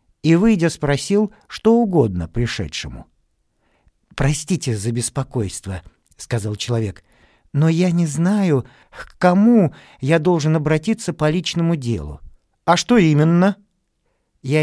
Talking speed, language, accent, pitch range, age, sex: 110 wpm, Russian, native, 130-180 Hz, 50-69, male